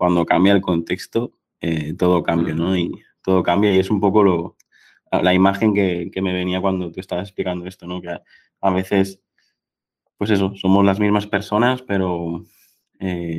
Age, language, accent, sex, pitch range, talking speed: 20-39, Spanish, Spanish, male, 85-95 Hz, 170 wpm